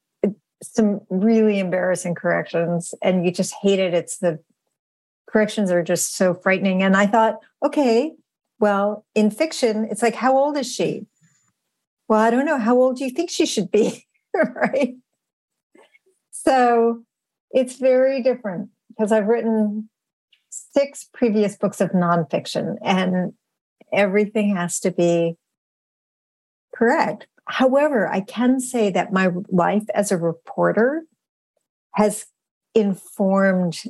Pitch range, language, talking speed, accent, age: 185-225 Hz, English, 130 wpm, American, 50-69